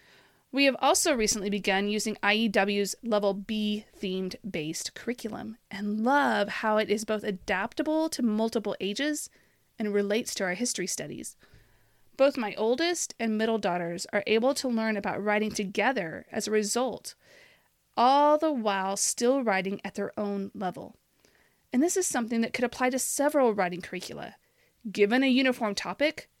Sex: female